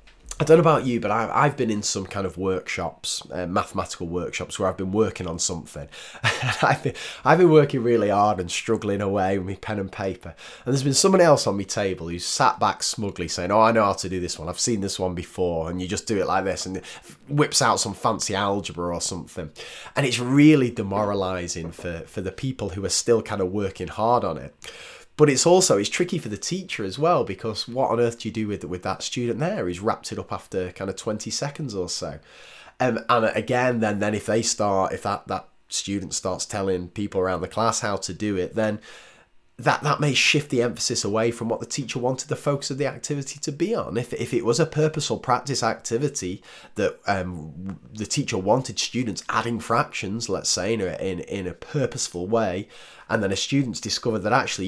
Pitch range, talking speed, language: 95-125 Hz, 220 wpm, English